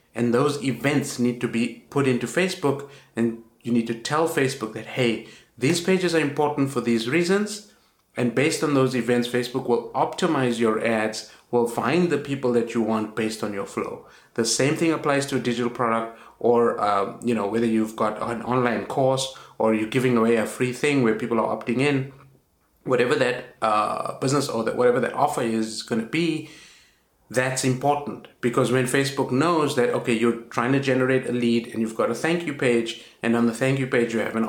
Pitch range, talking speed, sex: 115-140 Hz, 205 wpm, male